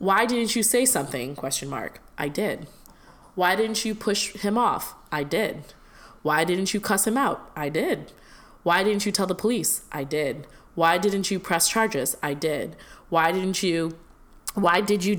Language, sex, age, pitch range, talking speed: English, female, 20-39, 155-195 Hz, 180 wpm